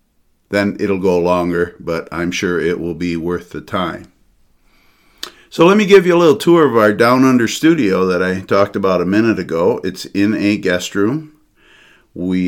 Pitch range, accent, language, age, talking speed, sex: 90-115 Hz, American, English, 50-69, 190 wpm, male